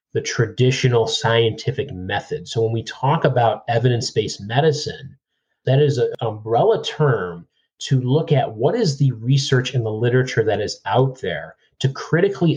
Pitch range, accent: 115-145 Hz, American